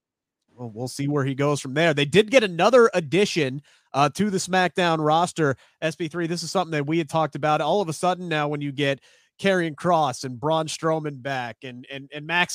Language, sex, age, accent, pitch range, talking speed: English, male, 30-49, American, 160-205 Hz, 215 wpm